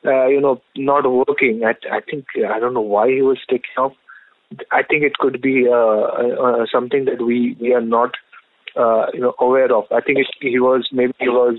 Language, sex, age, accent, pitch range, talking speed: English, male, 20-39, Indian, 130-180 Hz, 210 wpm